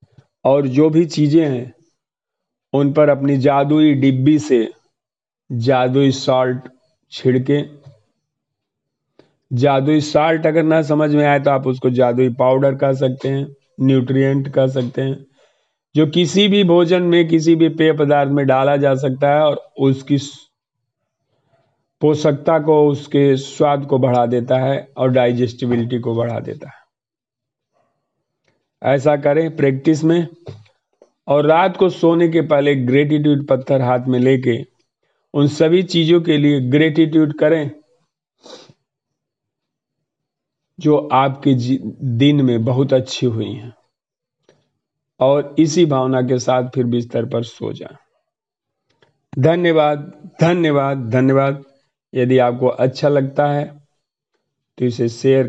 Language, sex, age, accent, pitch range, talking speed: Hindi, male, 50-69, native, 130-150 Hz, 120 wpm